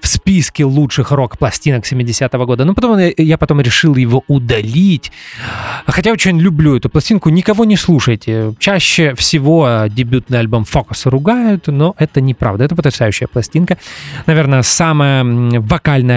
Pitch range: 130-180 Hz